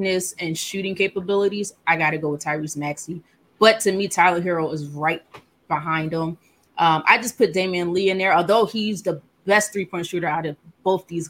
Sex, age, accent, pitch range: female, 20-39, American, 170-220 Hz